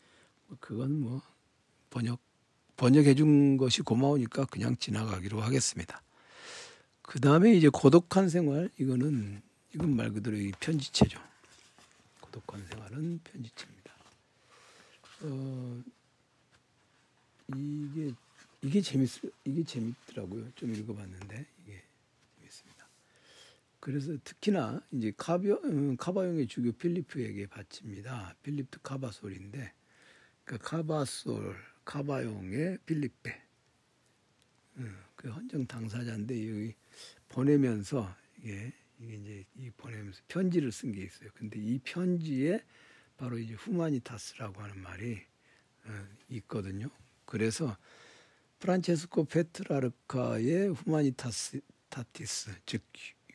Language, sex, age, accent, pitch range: Korean, male, 60-79, native, 110-145 Hz